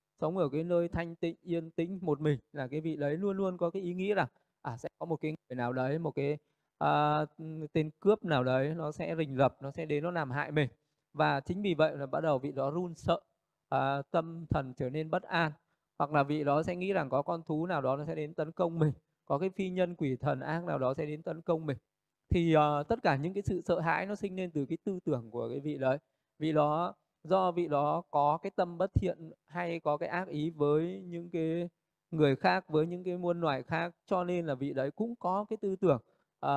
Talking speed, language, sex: 255 wpm, Vietnamese, male